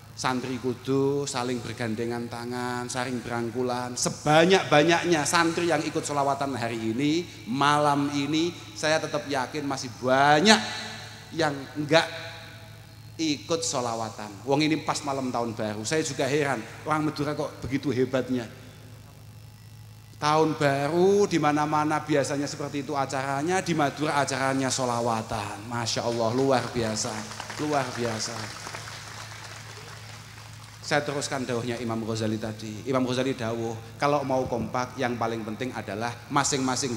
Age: 30-49